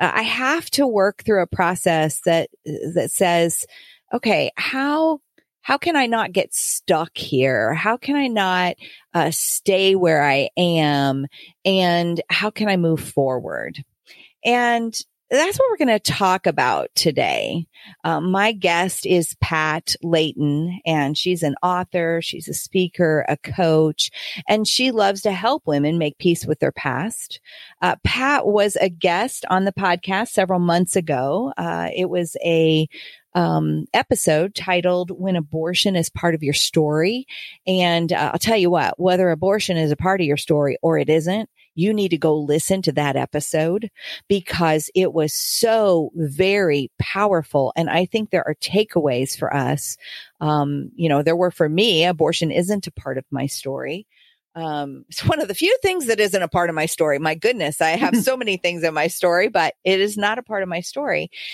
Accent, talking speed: American, 175 wpm